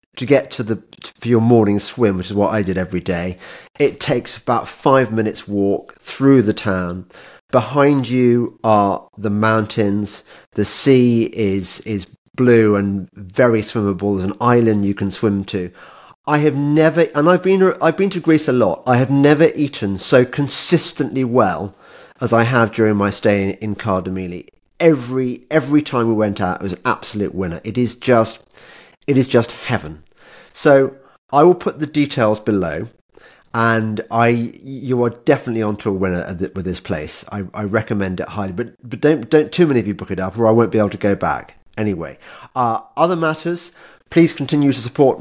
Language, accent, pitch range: English, British, 100-135 Hz